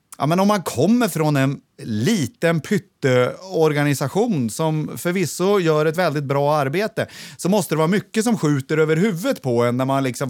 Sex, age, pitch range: male, 30-49, 145-210 Hz